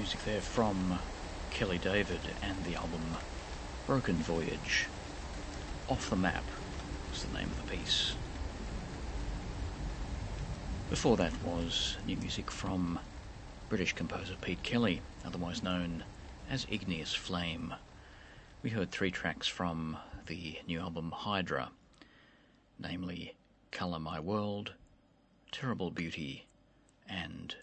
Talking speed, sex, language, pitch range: 110 wpm, male, English, 80-90 Hz